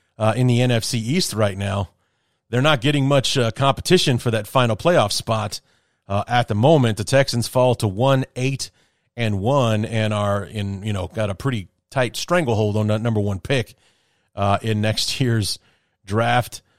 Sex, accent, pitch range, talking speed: male, American, 105-130 Hz, 175 wpm